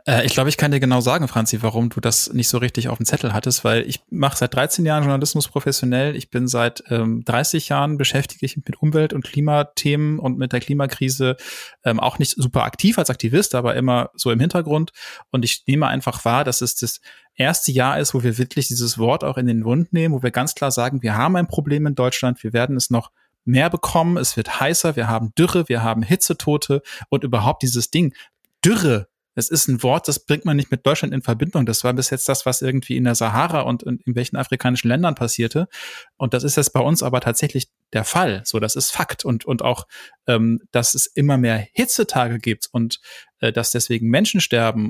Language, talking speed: German, 220 wpm